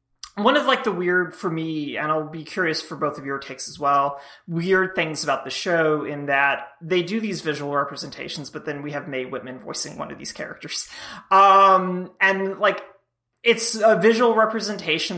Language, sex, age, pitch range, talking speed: English, male, 30-49, 140-185 Hz, 190 wpm